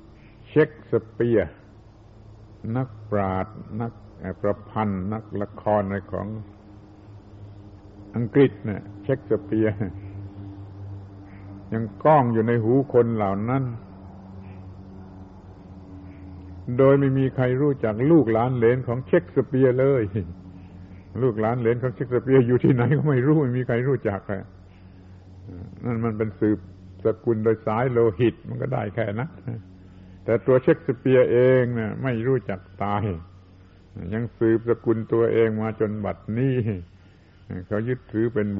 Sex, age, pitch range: male, 60-79, 95-120 Hz